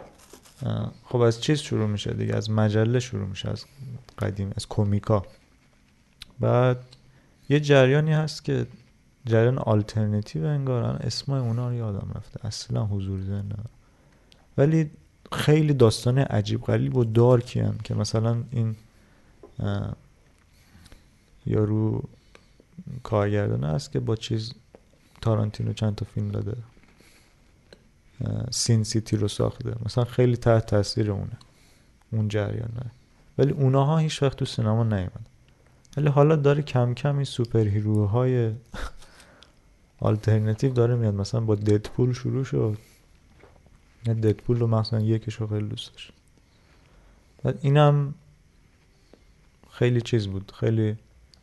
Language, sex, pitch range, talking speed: Persian, male, 105-125 Hz, 115 wpm